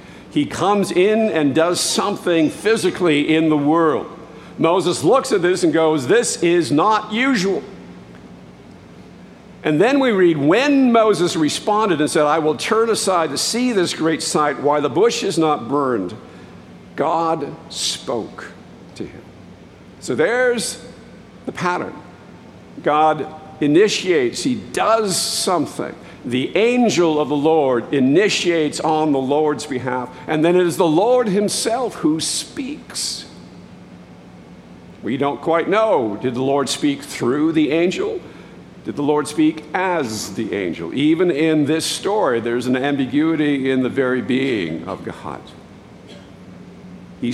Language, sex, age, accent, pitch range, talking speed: English, male, 50-69, American, 140-210 Hz, 135 wpm